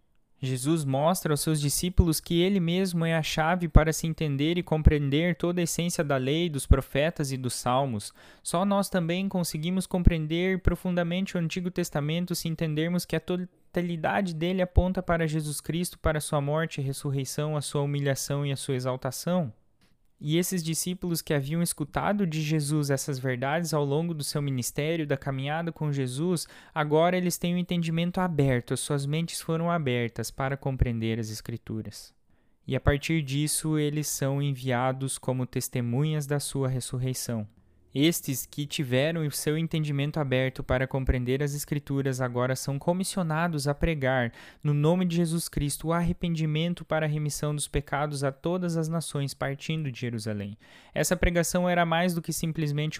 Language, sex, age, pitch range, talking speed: Portuguese, male, 20-39, 135-165 Hz, 165 wpm